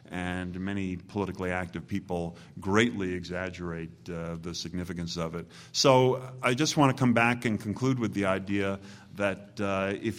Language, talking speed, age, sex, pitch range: English, 160 wpm, 40-59, male, 90-105 Hz